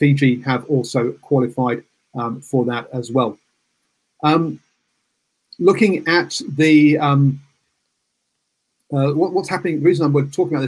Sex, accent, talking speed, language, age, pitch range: male, British, 135 wpm, English, 40-59, 130-150 Hz